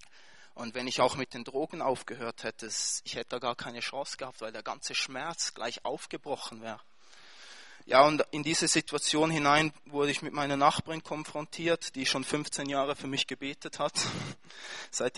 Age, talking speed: 20-39, 175 wpm